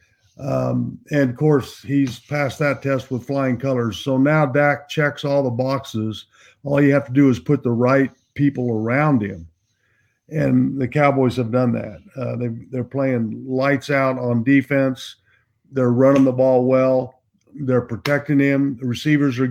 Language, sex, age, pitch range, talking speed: English, male, 50-69, 125-150 Hz, 165 wpm